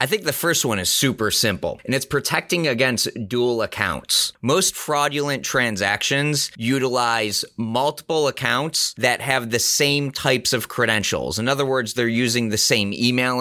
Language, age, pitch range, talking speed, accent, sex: English, 30-49, 120-165 Hz, 155 wpm, American, male